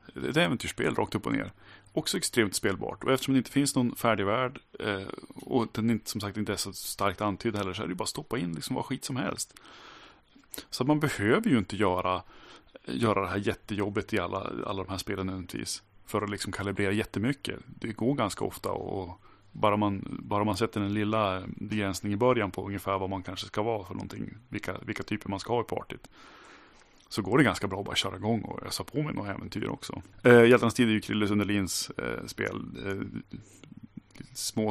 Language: Swedish